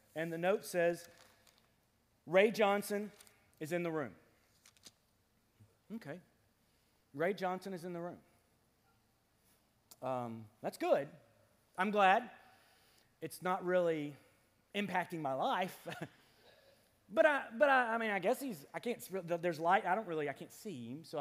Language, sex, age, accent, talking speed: English, male, 30-49, American, 140 wpm